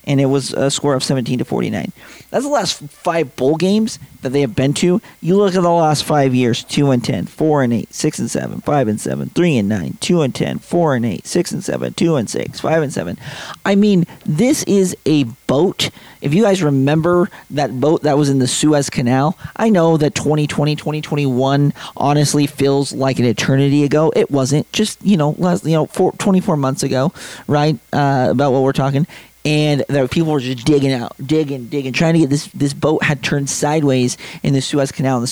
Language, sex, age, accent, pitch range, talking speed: English, male, 40-59, American, 130-155 Hz, 215 wpm